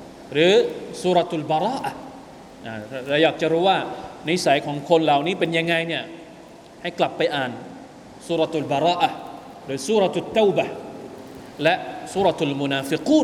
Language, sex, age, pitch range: Thai, male, 30-49, 150-220 Hz